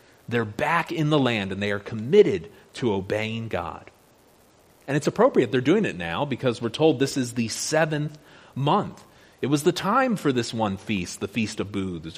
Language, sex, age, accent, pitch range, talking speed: English, male, 30-49, American, 110-155 Hz, 190 wpm